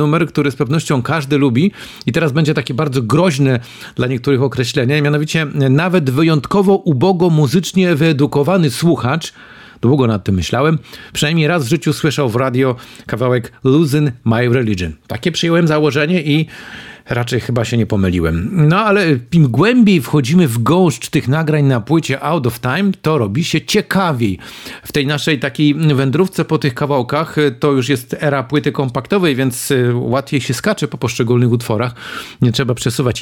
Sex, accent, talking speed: male, native, 160 wpm